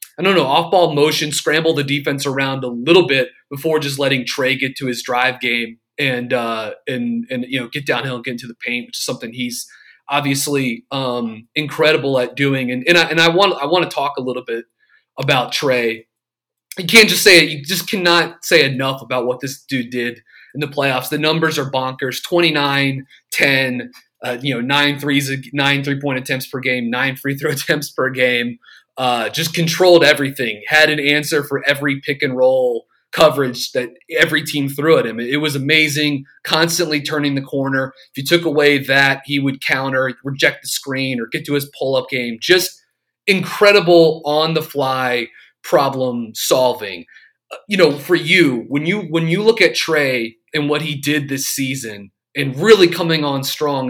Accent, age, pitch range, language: American, 30-49, 125-155 Hz, English